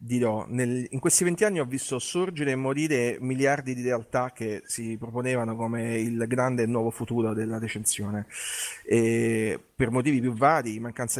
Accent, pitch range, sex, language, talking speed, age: native, 115-135 Hz, male, Italian, 160 wpm, 30-49